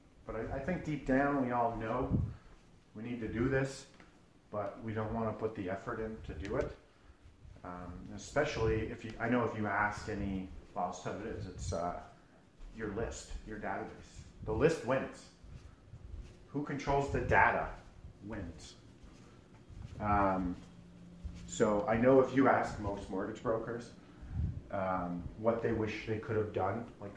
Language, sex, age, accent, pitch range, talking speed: English, male, 40-59, American, 95-115 Hz, 160 wpm